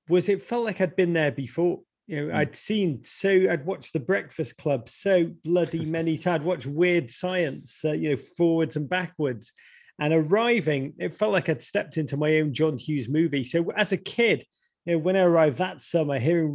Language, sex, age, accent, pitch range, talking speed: English, male, 30-49, British, 145-180 Hz, 205 wpm